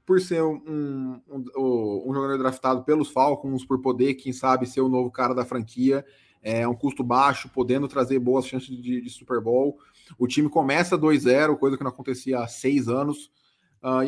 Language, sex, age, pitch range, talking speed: Portuguese, male, 20-39, 120-140 Hz, 190 wpm